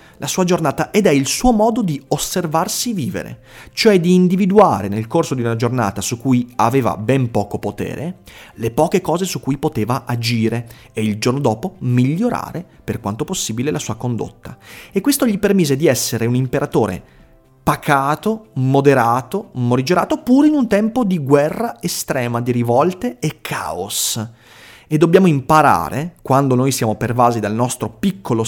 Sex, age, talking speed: male, 30-49, 160 wpm